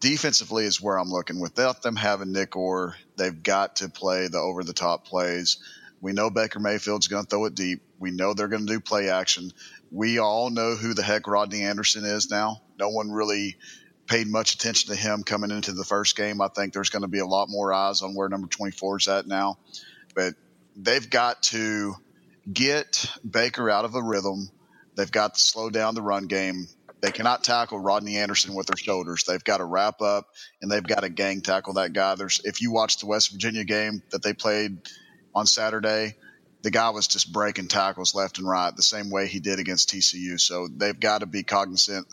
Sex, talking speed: male, 215 wpm